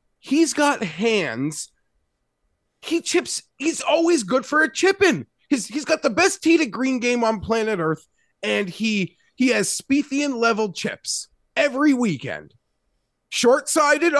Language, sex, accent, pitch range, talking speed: English, male, American, 165-255 Hz, 145 wpm